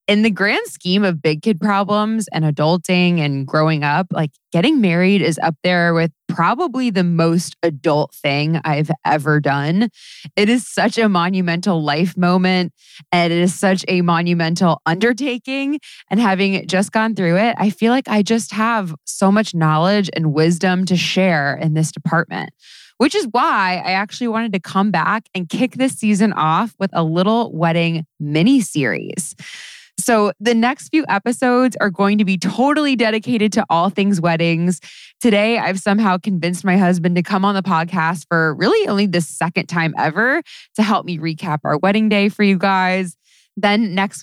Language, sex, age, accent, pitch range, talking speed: English, female, 20-39, American, 165-210 Hz, 175 wpm